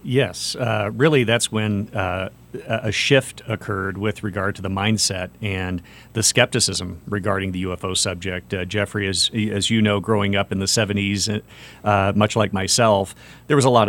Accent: American